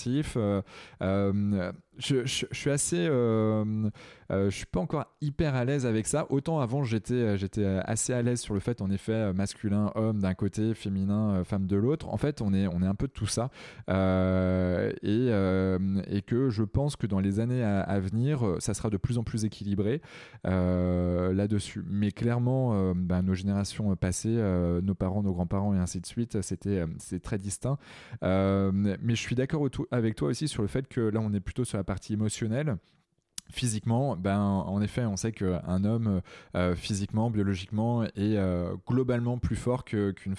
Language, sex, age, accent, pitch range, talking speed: French, male, 20-39, French, 95-120 Hz, 200 wpm